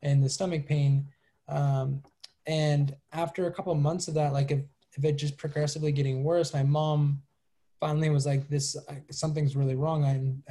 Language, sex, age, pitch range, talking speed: English, male, 20-39, 135-150 Hz, 175 wpm